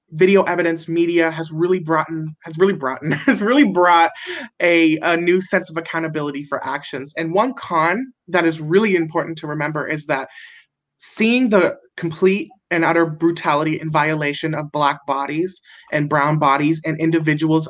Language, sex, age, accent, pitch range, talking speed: English, male, 20-39, American, 150-175 Hz, 160 wpm